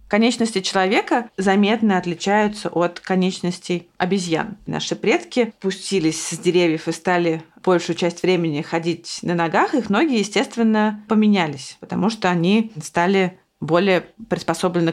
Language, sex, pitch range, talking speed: Russian, female, 175-210 Hz, 120 wpm